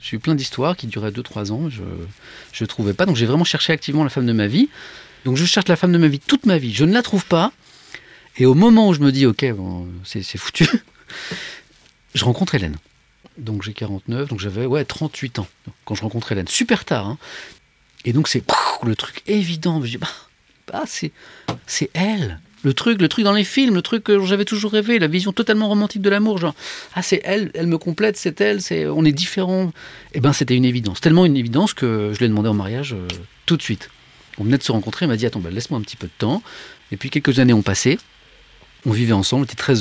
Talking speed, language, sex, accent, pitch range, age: 235 wpm, French, male, French, 105-160 Hz, 40-59